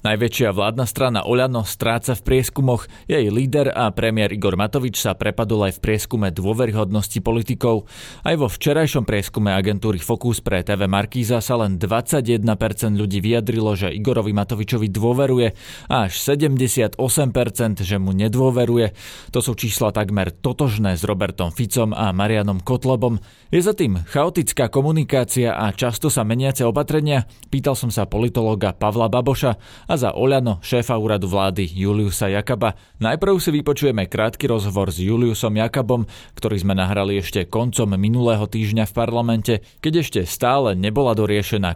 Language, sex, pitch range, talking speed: Slovak, male, 100-120 Hz, 145 wpm